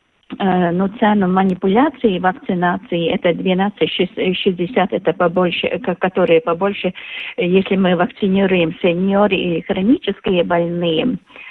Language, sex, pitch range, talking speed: Russian, female, 185-230 Hz, 95 wpm